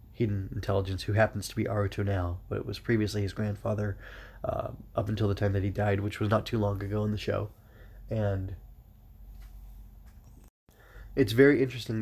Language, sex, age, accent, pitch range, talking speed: English, male, 20-39, American, 100-115 Hz, 175 wpm